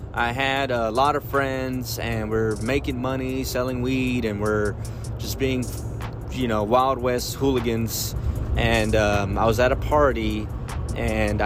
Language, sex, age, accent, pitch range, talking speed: English, male, 20-39, American, 110-125 Hz, 150 wpm